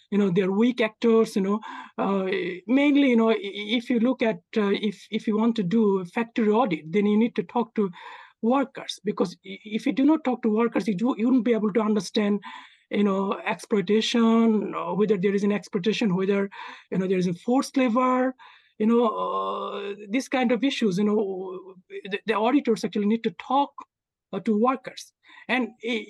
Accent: Indian